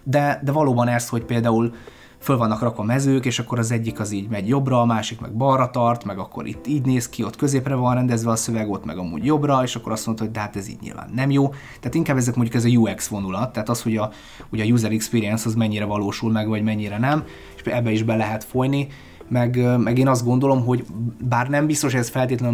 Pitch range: 110-130 Hz